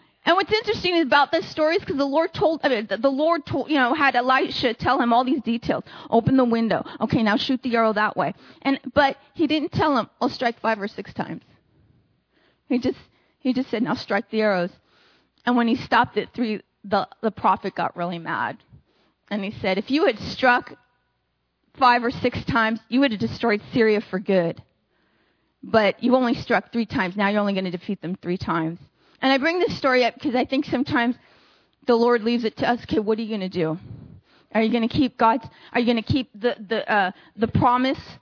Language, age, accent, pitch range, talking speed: English, 30-49, American, 220-290 Hz, 220 wpm